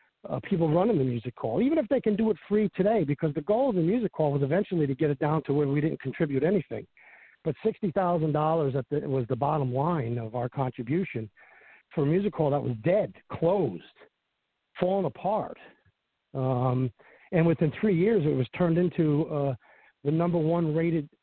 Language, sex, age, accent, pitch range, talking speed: English, male, 50-69, American, 135-170 Hz, 185 wpm